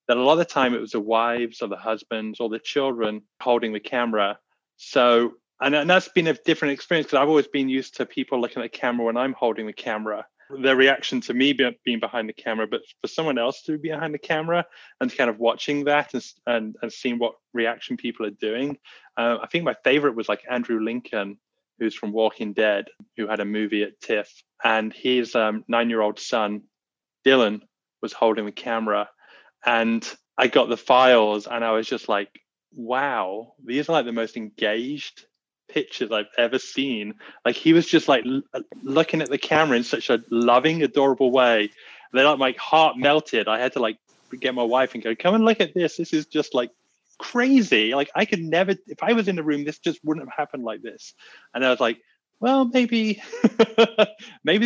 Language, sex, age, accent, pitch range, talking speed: English, male, 20-39, British, 115-160 Hz, 205 wpm